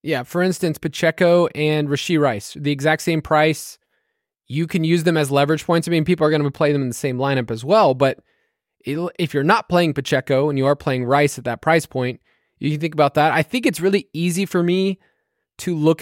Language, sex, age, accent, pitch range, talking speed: English, male, 20-39, American, 145-180 Hz, 230 wpm